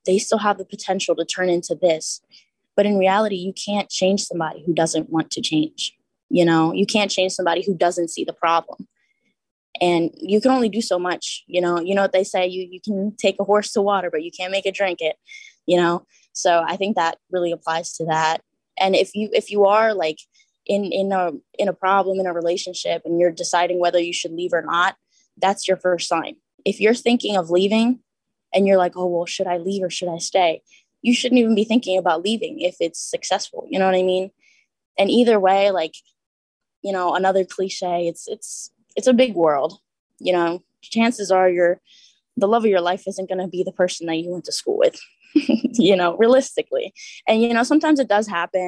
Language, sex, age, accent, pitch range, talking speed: English, female, 10-29, American, 175-210 Hz, 220 wpm